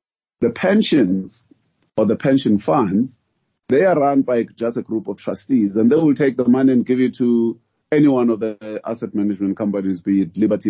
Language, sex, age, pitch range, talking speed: English, male, 30-49, 100-120 Hz, 195 wpm